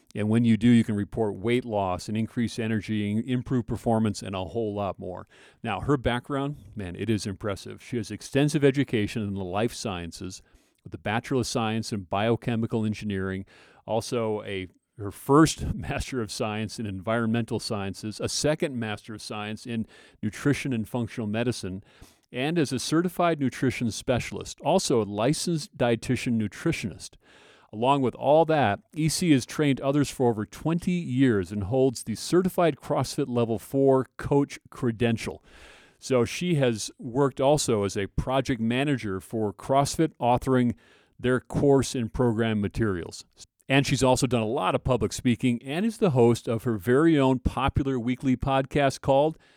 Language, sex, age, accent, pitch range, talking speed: English, male, 40-59, American, 105-135 Hz, 160 wpm